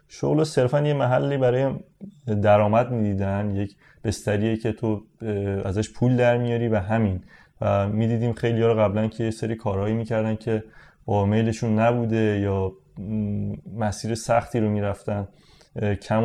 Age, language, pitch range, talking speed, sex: 30-49, Persian, 105-130 Hz, 140 wpm, male